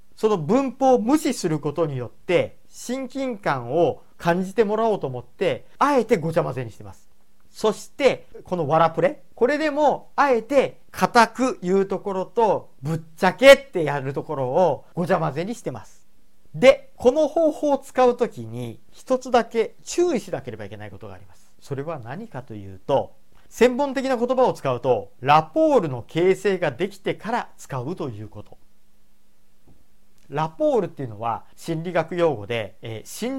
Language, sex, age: Japanese, male, 40-59